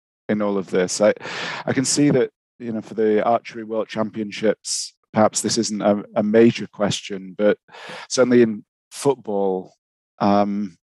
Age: 40-59